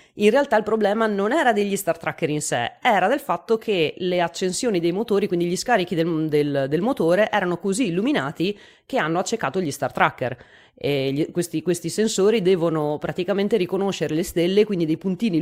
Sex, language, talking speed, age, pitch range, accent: female, Italian, 180 wpm, 30-49, 150-200 Hz, native